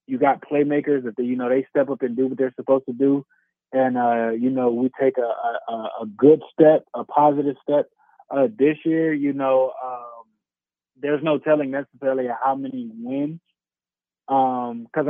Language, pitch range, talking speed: English, 125-145 Hz, 175 wpm